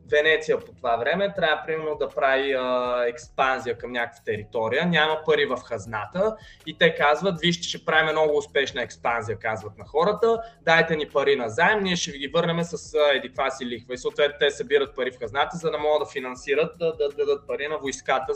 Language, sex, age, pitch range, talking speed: Bulgarian, male, 20-39, 135-175 Hz, 205 wpm